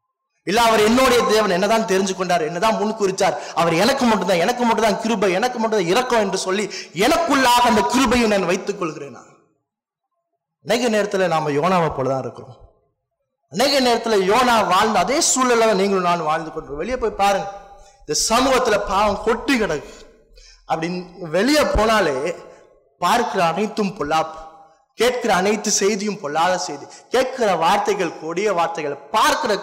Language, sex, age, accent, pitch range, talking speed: Tamil, male, 20-39, native, 160-230 Hz, 130 wpm